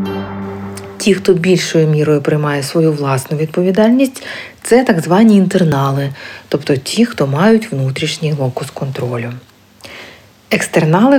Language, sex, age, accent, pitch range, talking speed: Ukrainian, female, 40-59, native, 140-215 Hz, 115 wpm